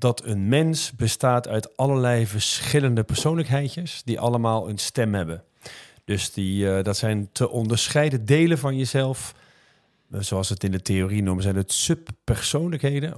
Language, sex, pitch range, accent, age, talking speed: Dutch, male, 105-135 Hz, Dutch, 40-59, 150 wpm